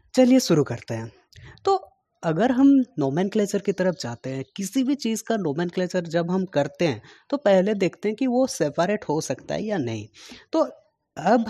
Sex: female